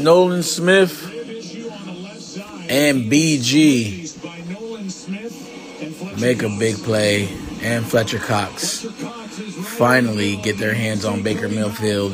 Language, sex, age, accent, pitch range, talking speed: English, male, 20-39, American, 105-155 Hz, 90 wpm